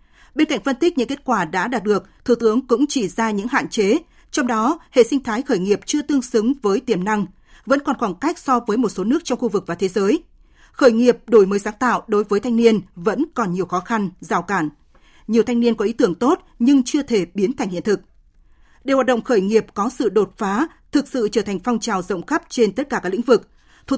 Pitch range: 195-255 Hz